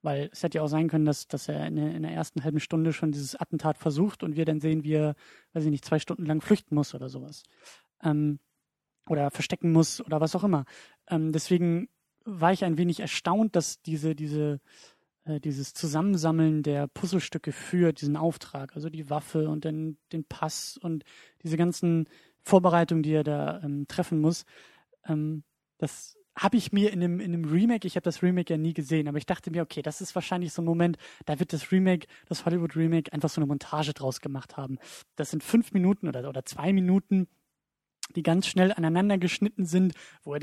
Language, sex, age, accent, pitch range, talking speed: German, male, 20-39, German, 155-185 Hz, 200 wpm